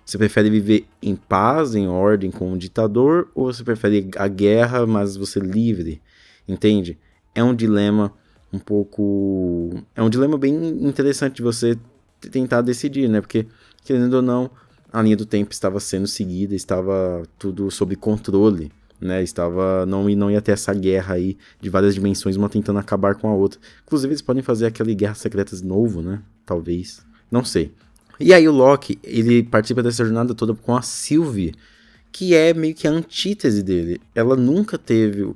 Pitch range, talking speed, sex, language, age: 95-125 Hz, 180 wpm, male, Portuguese, 20-39